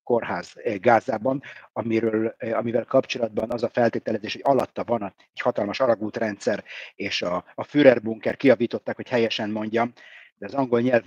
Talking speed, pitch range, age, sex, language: 130 wpm, 115-135 Hz, 50-69, male, Hungarian